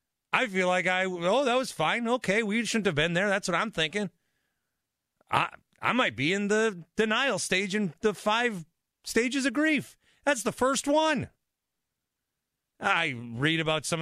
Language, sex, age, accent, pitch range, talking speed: English, male, 40-59, American, 140-195 Hz, 170 wpm